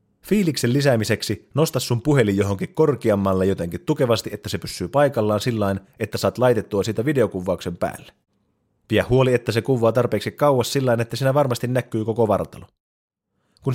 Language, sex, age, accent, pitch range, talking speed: Finnish, male, 30-49, native, 100-130 Hz, 155 wpm